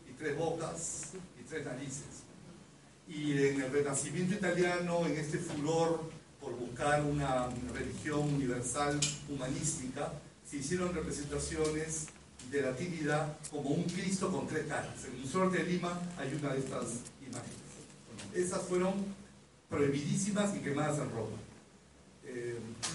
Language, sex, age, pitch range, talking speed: Spanish, male, 40-59, 140-175 Hz, 130 wpm